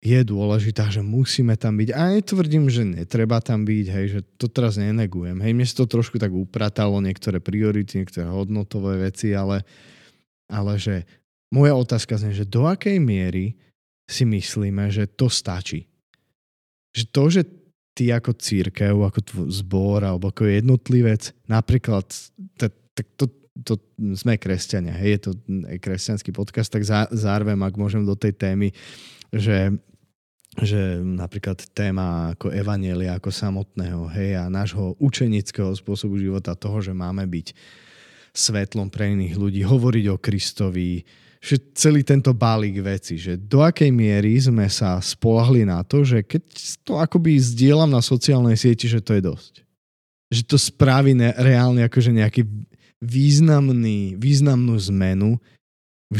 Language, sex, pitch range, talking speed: Slovak, male, 95-120 Hz, 145 wpm